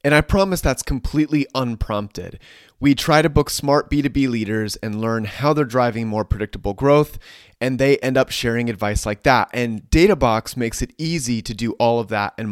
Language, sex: English, male